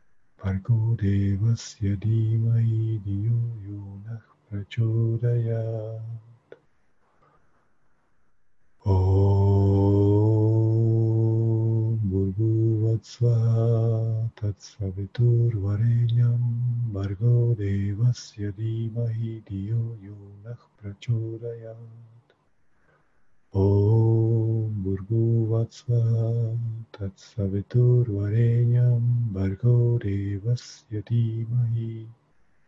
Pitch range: 100-115 Hz